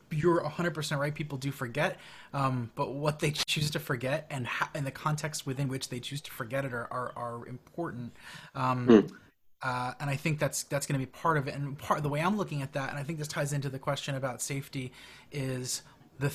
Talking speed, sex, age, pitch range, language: 230 wpm, male, 20-39, 135-160 Hz, English